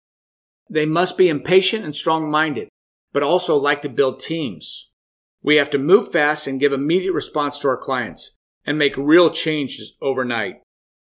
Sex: male